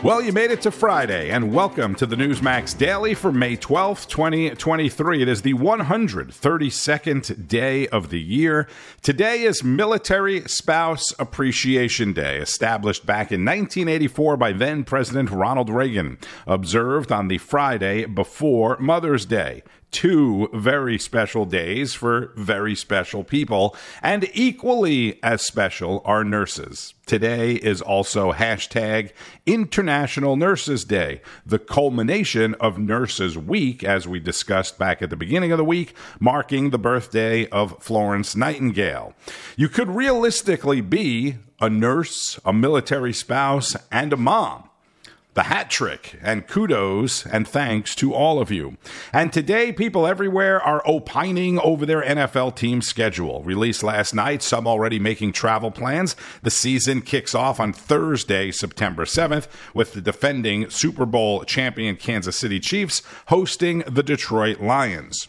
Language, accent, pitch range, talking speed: English, American, 110-150 Hz, 140 wpm